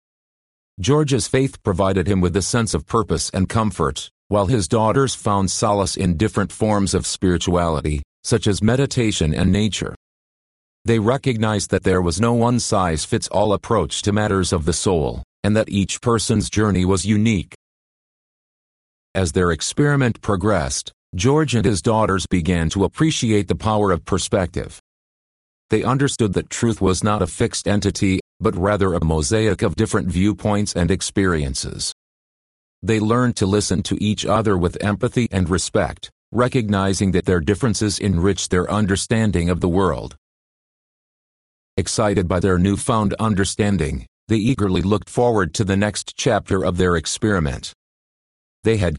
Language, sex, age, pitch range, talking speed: English, male, 40-59, 90-110 Hz, 145 wpm